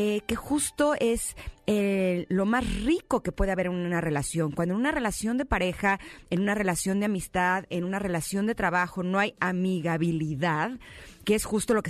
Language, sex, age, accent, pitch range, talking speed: Spanish, female, 30-49, Mexican, 165-215 Hz, 190 wpm